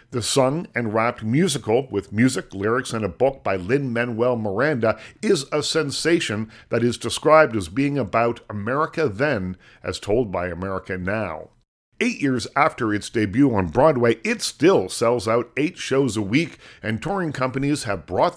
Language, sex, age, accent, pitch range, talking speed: English, male, 50-69, American, 110-145 Hz, 165 wpm